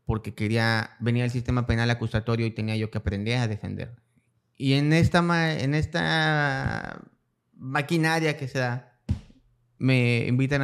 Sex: male